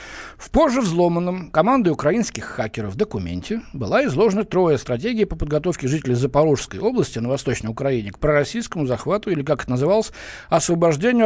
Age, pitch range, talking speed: 60-79, 125-185 Hz, 150 wpm